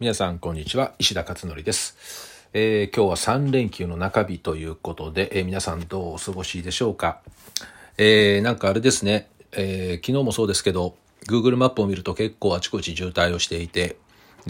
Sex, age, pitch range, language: male, 40-59, 90-115 Hz, Japanese